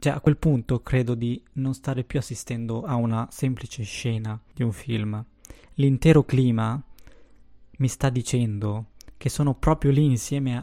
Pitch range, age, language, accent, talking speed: 115-145 Hz, 20-39, Italian, native, 150 wpm